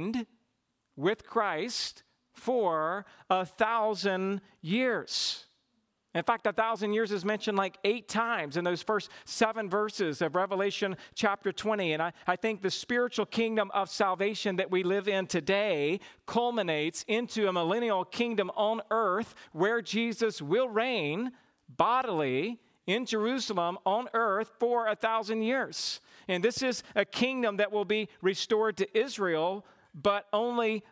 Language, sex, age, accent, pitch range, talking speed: English, male, 50-69, American, 175-220 Hz, 140 wpm